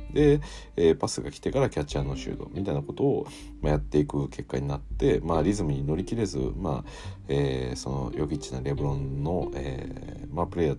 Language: Japanese